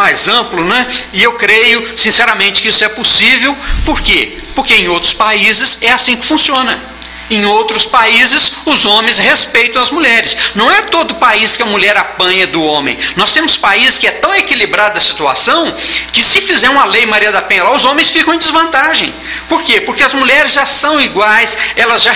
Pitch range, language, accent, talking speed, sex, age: 210-270 Hz, Portuguese, Brazilian, 195 wpm, male, 60-79